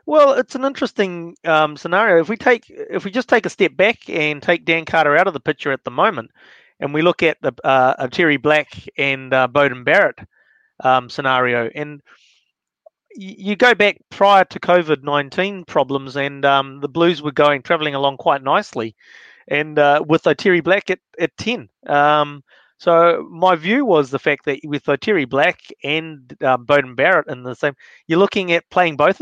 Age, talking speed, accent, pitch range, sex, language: 30-49, 185 wpm, Australian, 145-190 Hz, male, English